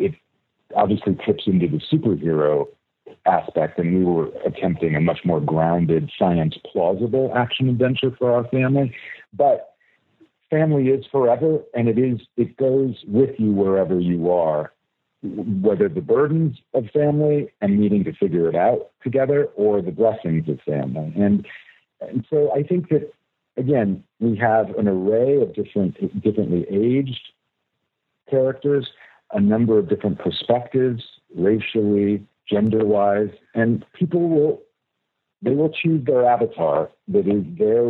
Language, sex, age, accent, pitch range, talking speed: English, male, 60-79, American, 90-130 Hz, 140 wpm